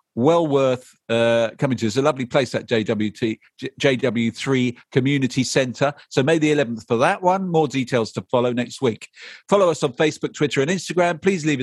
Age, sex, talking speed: 50-69, male, 180 wpm